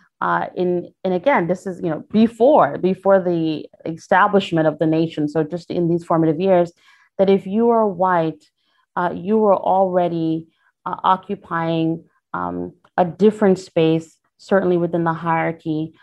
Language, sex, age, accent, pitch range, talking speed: English, female, 30-49, American, 165-195 Hz, 150 wpm